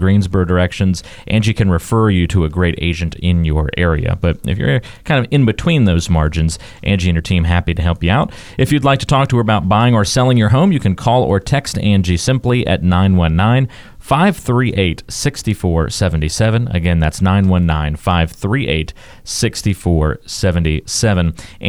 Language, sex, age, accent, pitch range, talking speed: English, male, 30-49, American, 85-115 Hz, 160 wpm